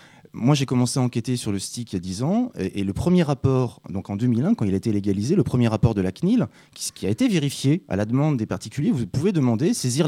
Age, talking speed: 30-49, 260 wpm